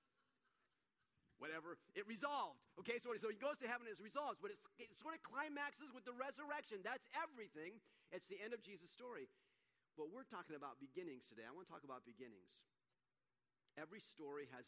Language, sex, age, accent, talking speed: English, male, 40-59, American, 180 wpm